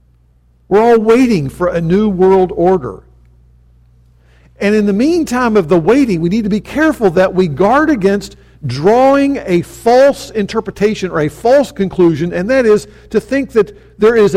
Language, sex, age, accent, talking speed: English, male, 50-69, American, 165 wpm